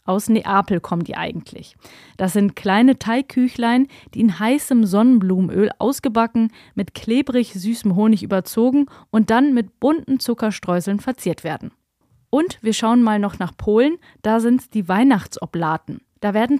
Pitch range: 200-245 Hz